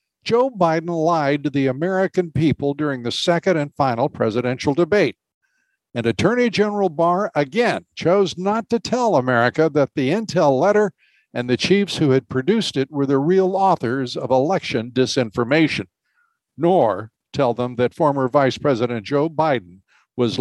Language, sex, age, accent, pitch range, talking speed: English, male, 60-79, American, 130-180 Hz, 155 wpm